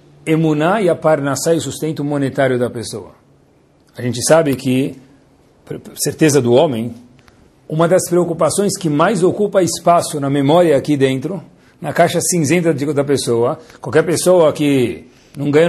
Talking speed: 140 wpm